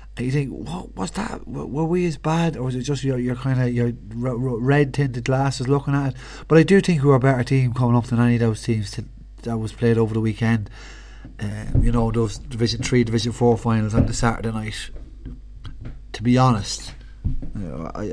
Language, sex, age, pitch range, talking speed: English, male, 30-49, 110-130 Hz, 220 wpm